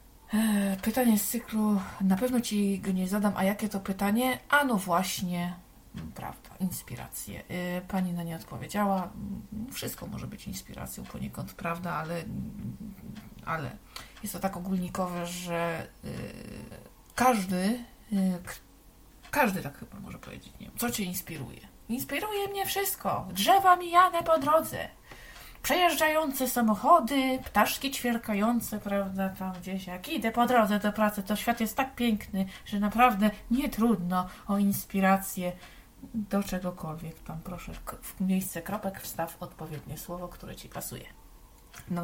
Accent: native